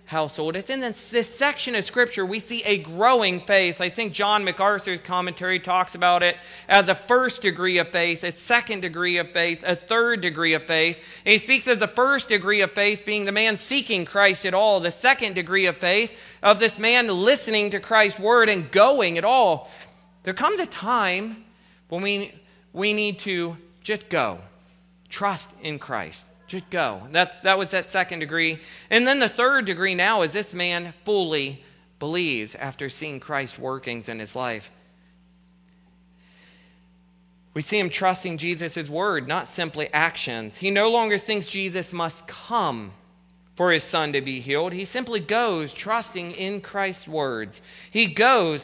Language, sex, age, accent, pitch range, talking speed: English, male, 40-59, American, 170-210 Hz, 175 wpm